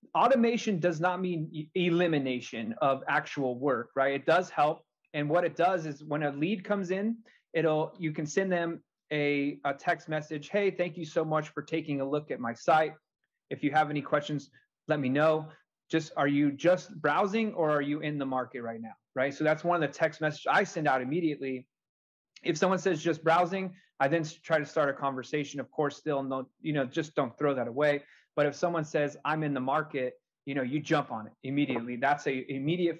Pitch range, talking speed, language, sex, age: 135-165 Hz, 215 wpm, English, male, 30-49